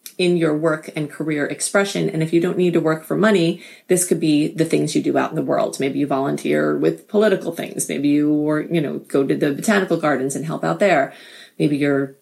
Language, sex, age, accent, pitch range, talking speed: English, female, 30-49, American, 155-200 Hz, 235 wpm